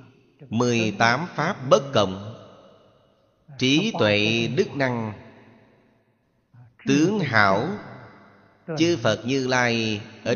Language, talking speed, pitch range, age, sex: Vietnamese, 85 wpm, 110-135 Hz, 30-49, male